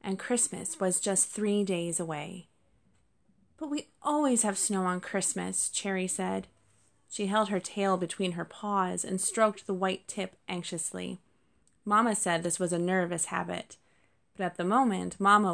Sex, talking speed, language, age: female, 160 wpm, English, 20-39